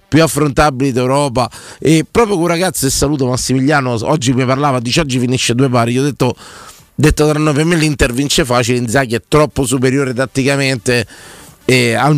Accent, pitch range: native, 120-150 Hz